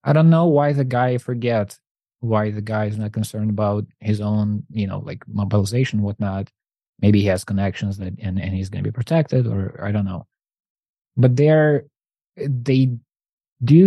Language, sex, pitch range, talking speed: English, male, 105-125 Hz, 175 wpm